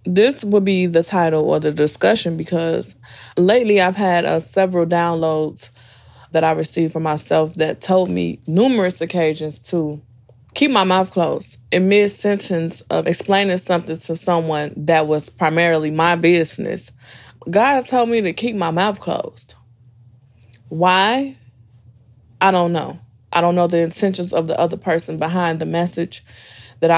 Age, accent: 20-39, American